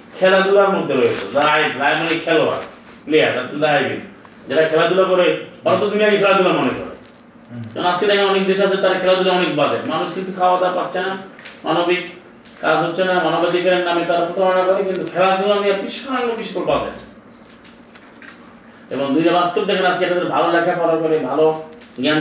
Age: 30-49